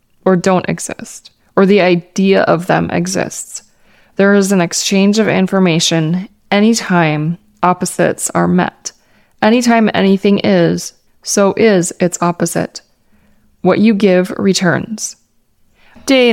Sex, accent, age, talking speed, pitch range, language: female, American, 20-39, 115 wpm, 175-205 Hz, English